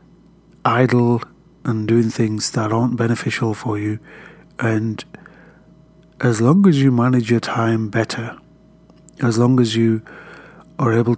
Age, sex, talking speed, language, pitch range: 30-49, male, 130 wpm, English, 115-130 Hz